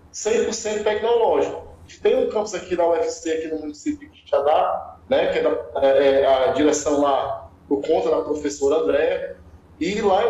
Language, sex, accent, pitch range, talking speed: English, male, Brazilian, 155-220 Hz, 170 wpm